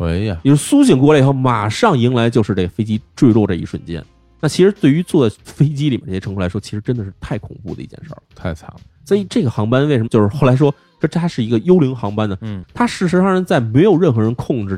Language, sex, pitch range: Chinese, male, 95-145 Hz